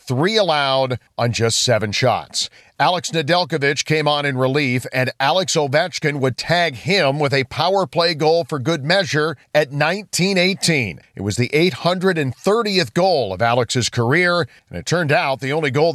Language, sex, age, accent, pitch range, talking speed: English, male, 50-69, American, 130-160 Hz, 160 wpm